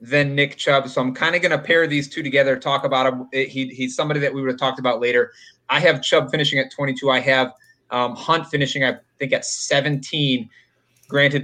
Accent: American